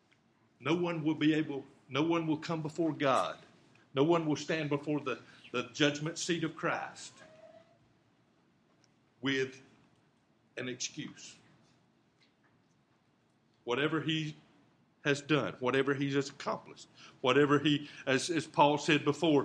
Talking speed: 125 wpm